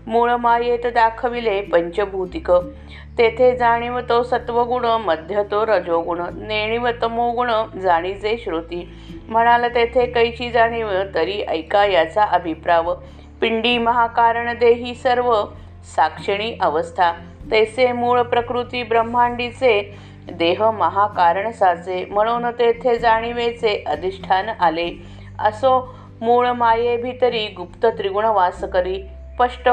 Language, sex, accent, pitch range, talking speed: Marathi, female, native, 180-240 Hz, 100 wpm